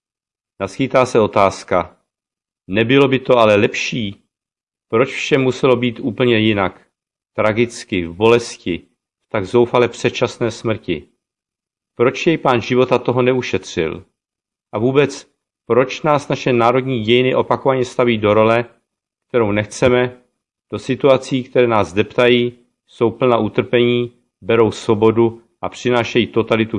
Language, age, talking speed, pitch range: Czech, 40-59, 120 wpm, 110-125 Hz